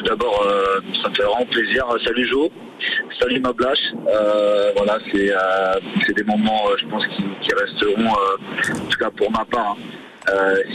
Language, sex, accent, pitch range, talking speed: French, male, French, 95-125 Hz, 185 wpm